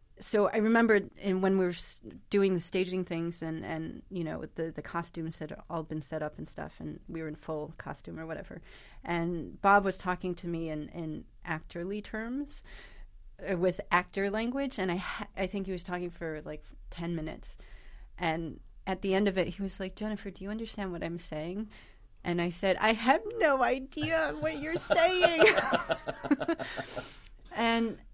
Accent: American